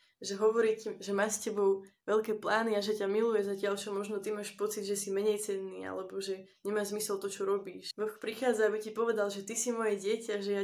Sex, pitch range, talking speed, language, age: female, 200-220 Hz, 230 wpm, Slovak, 20-39